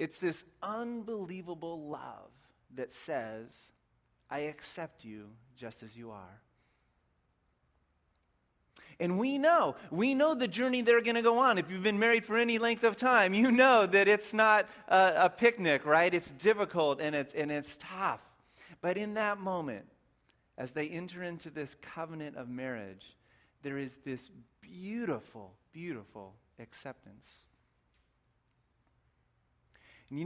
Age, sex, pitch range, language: 30-49, male, 105-170 Hz, English